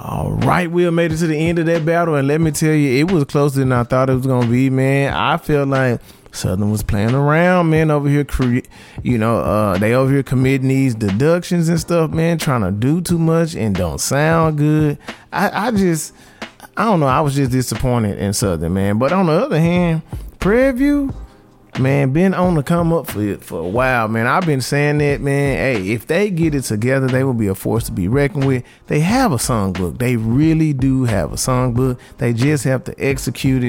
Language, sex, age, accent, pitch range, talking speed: English, male, 20-39, American, 120-165 Hz, 220 wpm